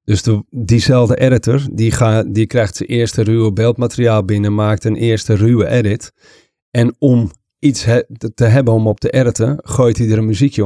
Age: 40-59